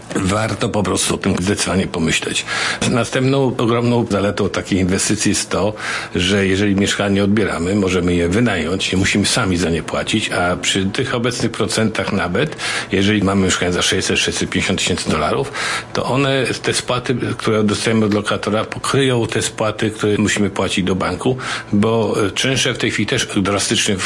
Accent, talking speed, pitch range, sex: native, 155 wpm, 95-115 Hz, male